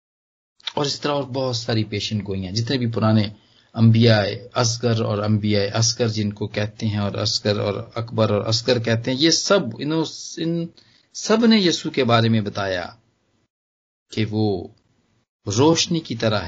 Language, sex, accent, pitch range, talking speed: Hindi, male, native, 110-150 Hz, 155 wpm